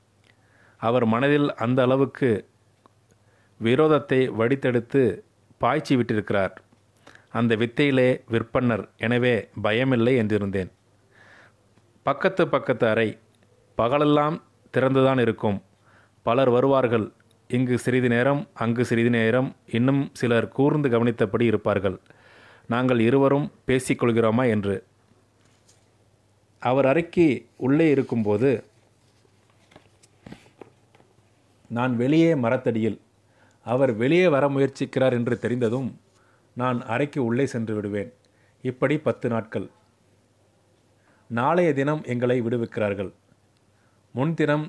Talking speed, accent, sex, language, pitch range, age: 85 wpm, native, male, Tamil, 110-130 Hz, 30-49